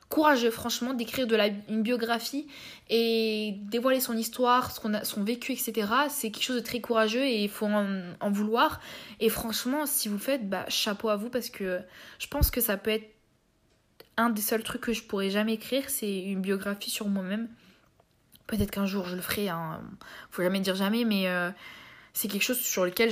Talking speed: 205 wpm